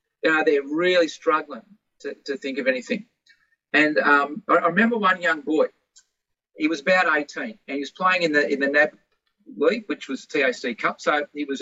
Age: 40-59